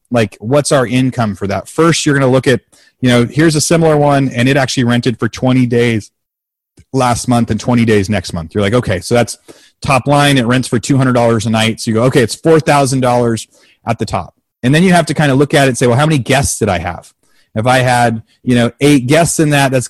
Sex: male